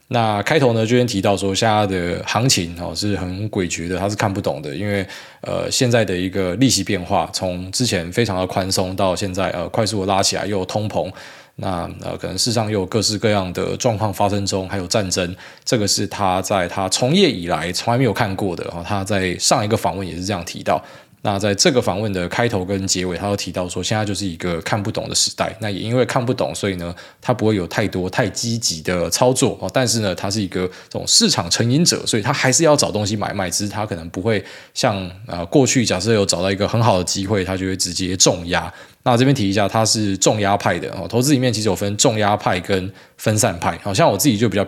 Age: 20-39